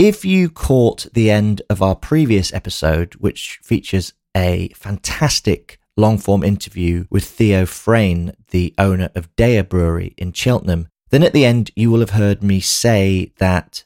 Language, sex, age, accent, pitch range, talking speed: English, male, 30-49, British, 90-110 Hz, 160 wpm